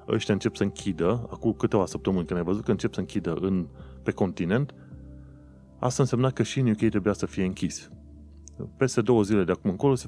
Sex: male